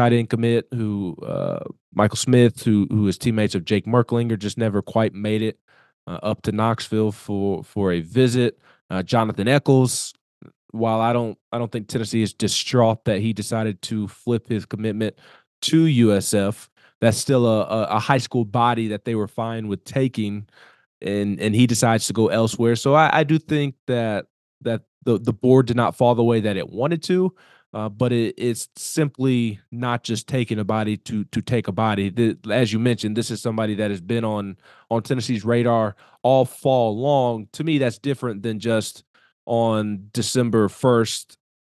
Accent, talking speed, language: American, 185 wpm, English